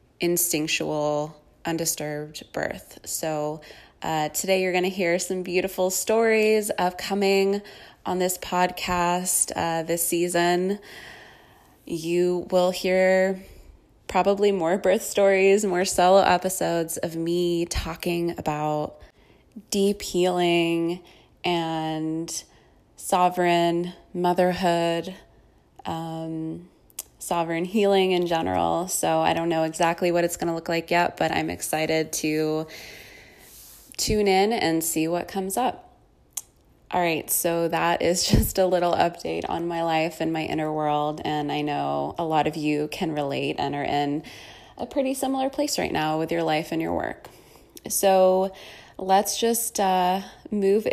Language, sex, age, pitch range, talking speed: English, female, 20-39, 160-190 Hz, 135 wpm